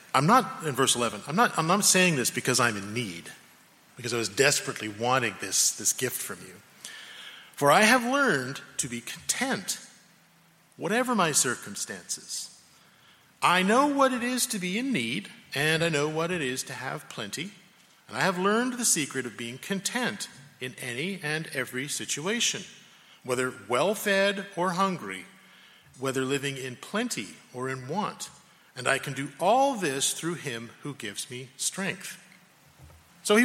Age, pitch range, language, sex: 40-59, 125-185 Hz, English, male